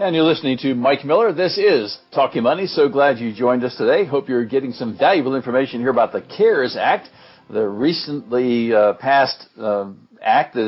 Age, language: 60-79, English